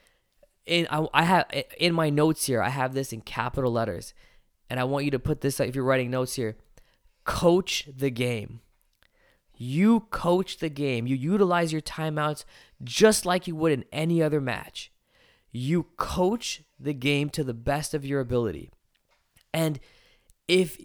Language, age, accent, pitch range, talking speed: English, 20-39, American, 130-165 Hz, 155 wpm